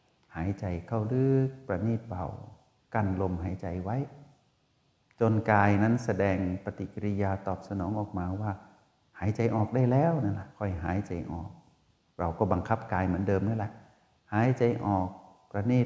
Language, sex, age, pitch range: Thai, male, 60-79, 95-115 Hz